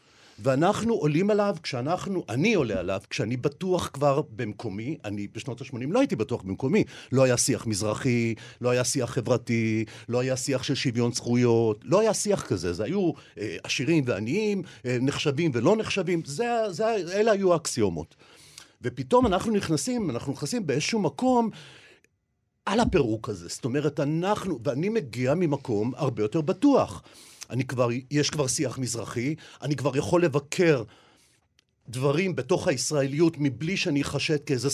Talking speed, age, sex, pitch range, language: 150 wpm, 50-69, male, 125-175 Hz, Hebrew